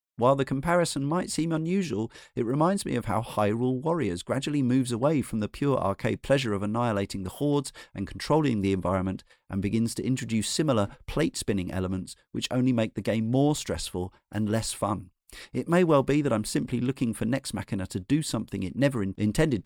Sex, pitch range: male, 95-125 Hz